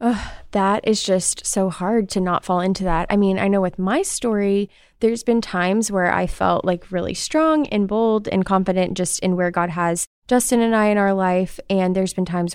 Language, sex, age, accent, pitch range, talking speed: English, female, 20-39, American, 175-215 Hz, 215 wpm